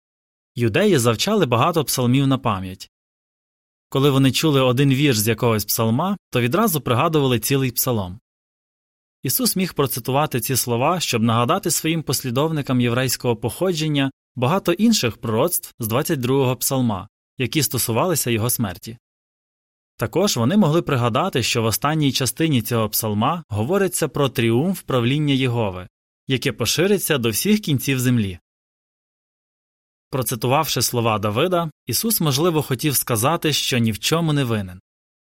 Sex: male